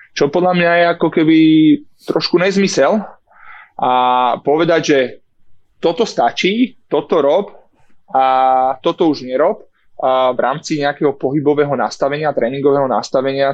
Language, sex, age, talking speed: Slovak, male, 20-39, 120 wpm